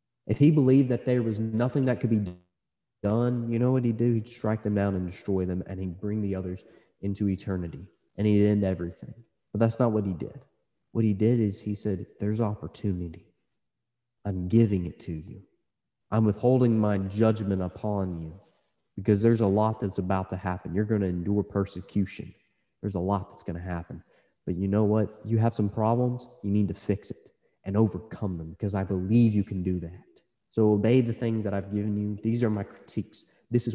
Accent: American